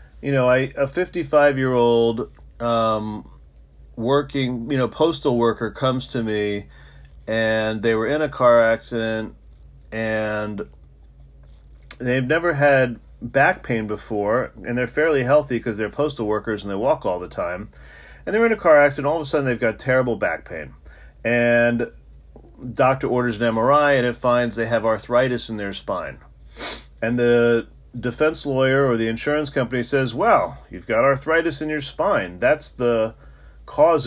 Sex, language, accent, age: male, English, American, 40-59